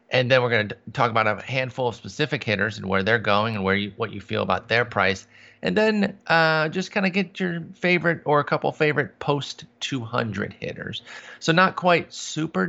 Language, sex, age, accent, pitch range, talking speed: English, male, 30-49, American, 115-140 Hz, 215 wpm